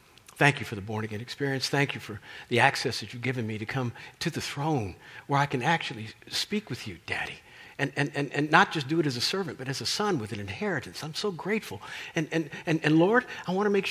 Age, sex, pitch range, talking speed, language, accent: 50-69, male, 115-160 Hz, 250 wpm, English, American